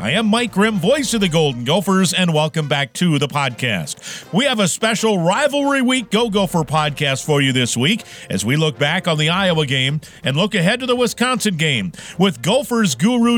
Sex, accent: male, American